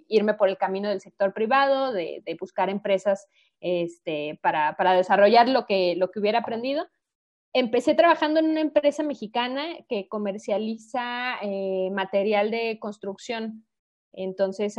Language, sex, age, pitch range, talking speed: Spanish, female, 20-39, 195-240 Hz, 140 wpm